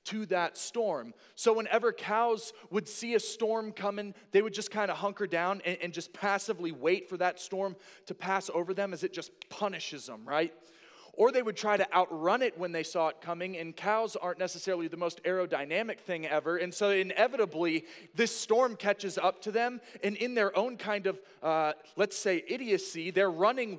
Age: 20-39